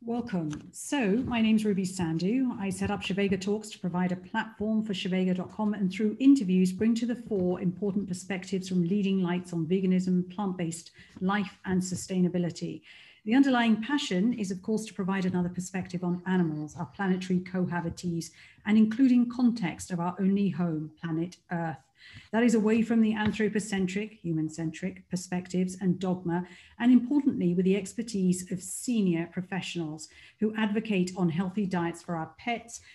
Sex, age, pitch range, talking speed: female, 50-69, 175-210 Hz, 160 wpm